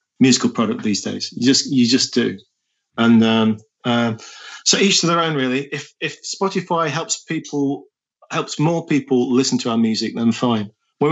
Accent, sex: British, male